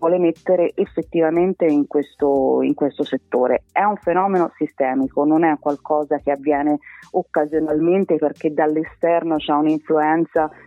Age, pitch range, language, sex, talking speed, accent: 30-49, 145-165 Hz, Italian, female, 125 wpm, native